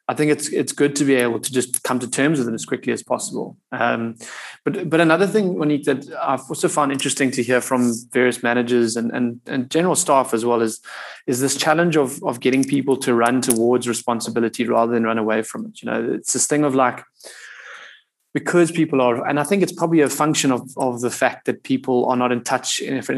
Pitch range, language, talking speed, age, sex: 120-140 Hz, English, 230 wpm, 20-39, male